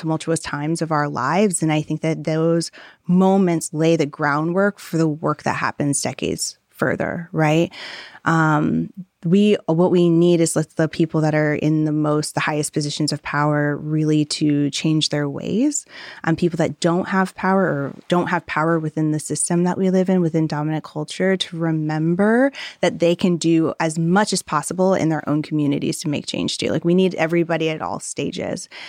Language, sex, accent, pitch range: English, female, American, 150-180 Hz